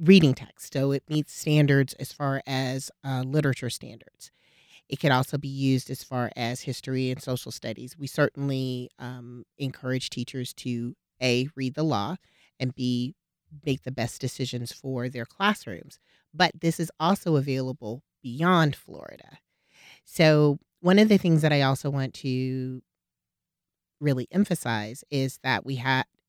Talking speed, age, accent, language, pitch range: 150 wpm, 30-49, American, English, 125-150 Hz